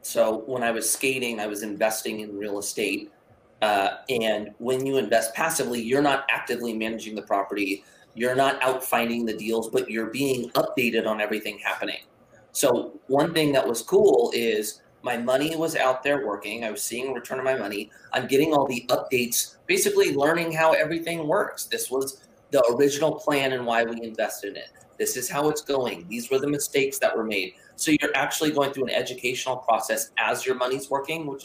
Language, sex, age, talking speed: English, male, 30-49, 195 wpm